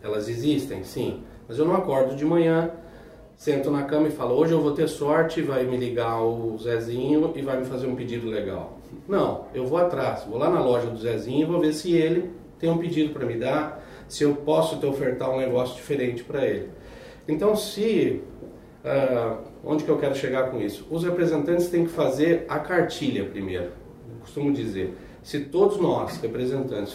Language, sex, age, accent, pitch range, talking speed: Portuguese, male, 40-59, Brazilian, 120-160 Hz, 190 wpm